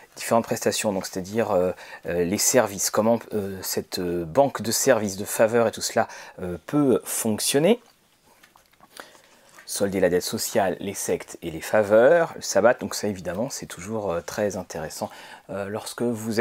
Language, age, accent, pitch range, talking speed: French, 30-49, French, 95-140 Hz, 165 wpm